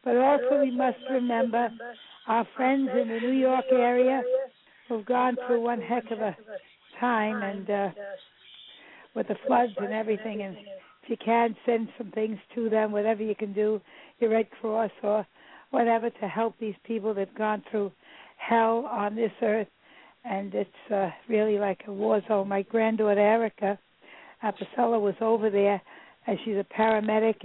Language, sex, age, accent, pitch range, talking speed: English, female, 60-79, American, 200-235 Hz, 170 wpm